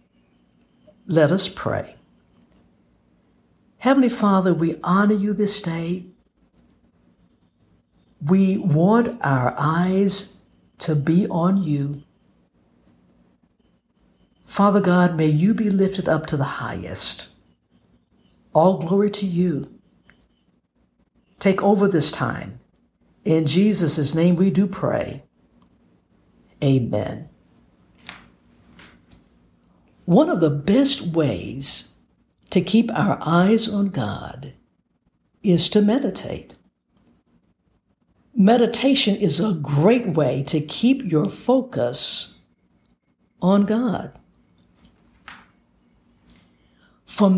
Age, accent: 60-79, American